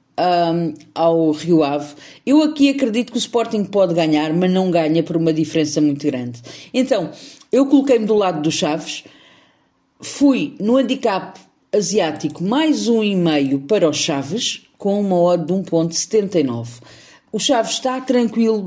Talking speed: 150 wpm